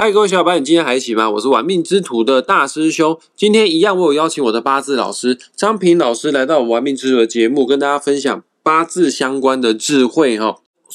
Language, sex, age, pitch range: Chinese, male, 20-39, 120-175 Hz